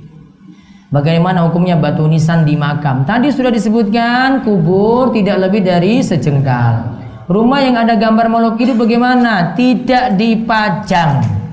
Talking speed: 120 wpm